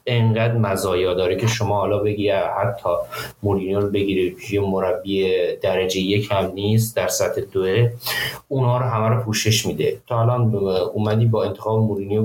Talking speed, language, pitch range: 155 wpm, Persian, 100-115 Hz